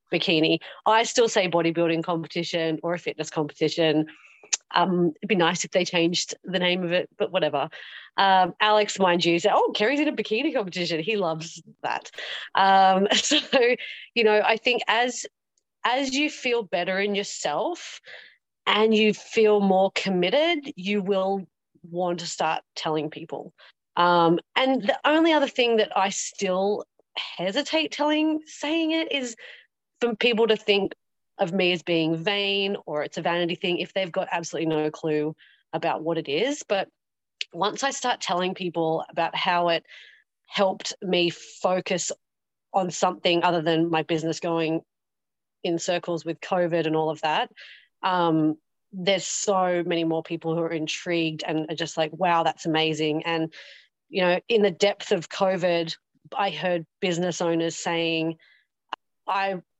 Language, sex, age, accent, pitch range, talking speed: English, female, 30-49, Australian, 165-205 Hz, 160 wpm